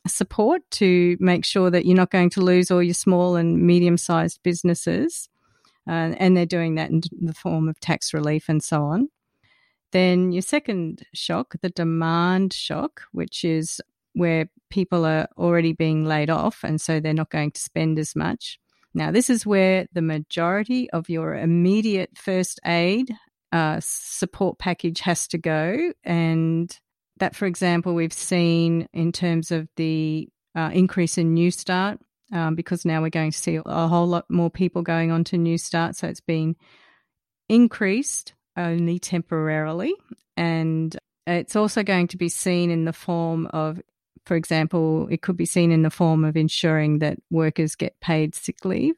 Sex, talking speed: female, 170 wpm